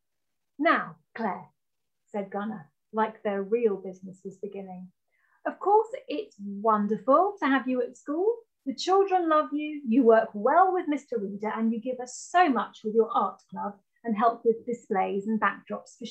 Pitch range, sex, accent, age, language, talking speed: 210-300 Hz, female, British, 30-49, English, 170 wpm